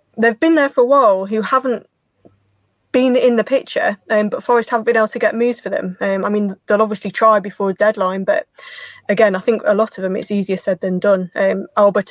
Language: English